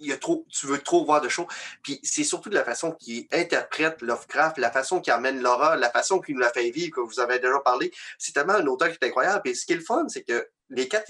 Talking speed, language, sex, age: 280 wpm, French, male, 30-49